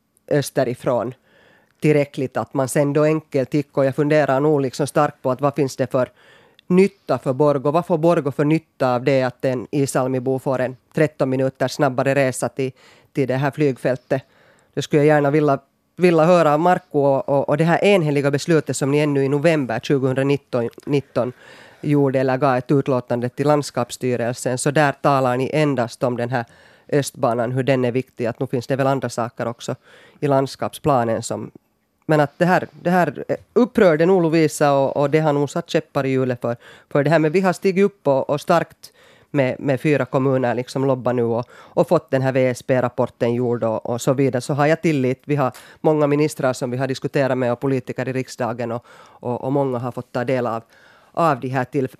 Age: 20-39